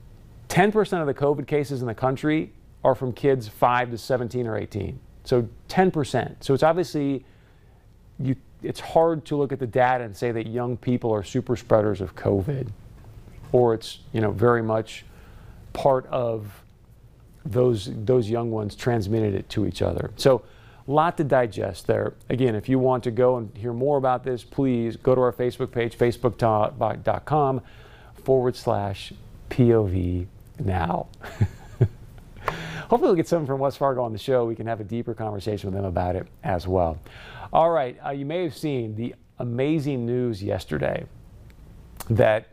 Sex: male